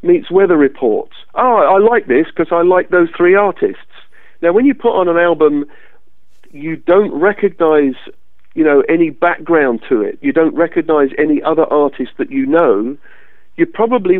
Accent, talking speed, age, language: British, 170 wpm, 50-69, English